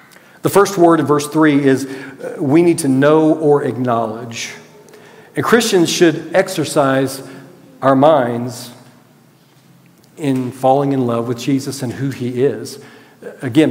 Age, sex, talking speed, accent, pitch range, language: 40-59, male, 135 wpm, American, 130-160 Hz, English